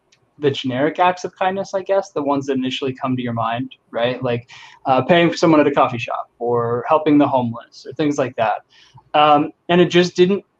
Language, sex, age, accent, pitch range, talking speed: English, male, 20-39, American, 130-155 Hz, 215 wpm